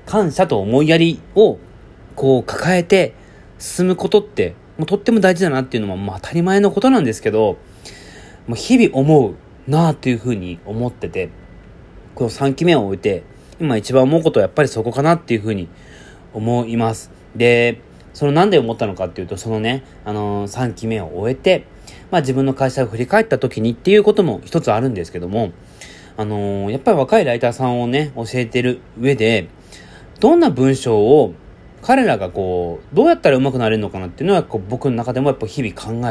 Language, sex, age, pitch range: Japanese, male, 30-49, 105-140 Hz